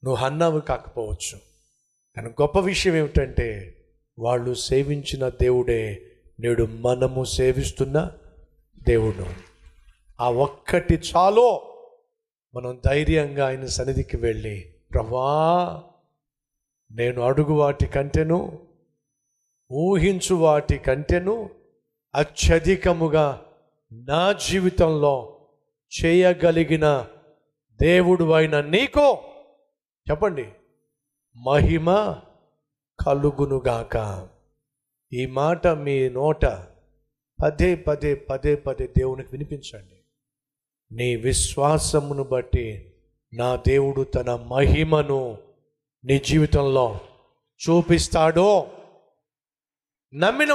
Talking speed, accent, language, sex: 70 wpm, native, Telugu, male